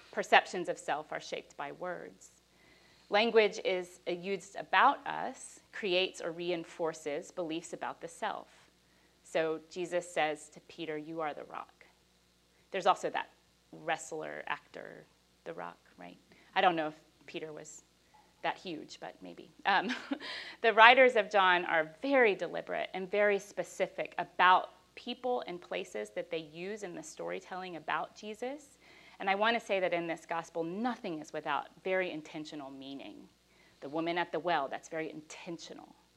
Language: English